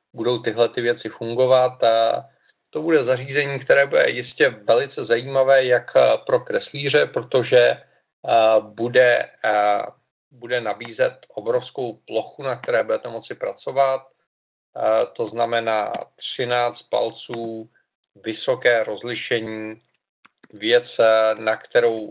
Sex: male